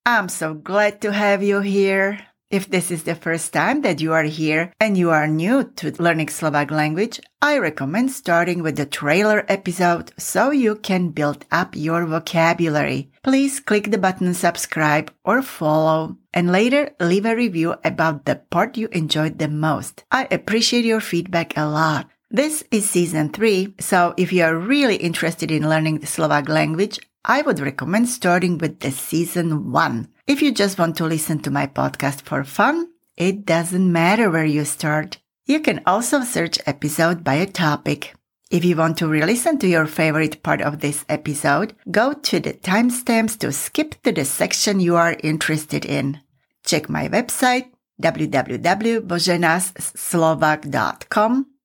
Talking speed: 165 wpm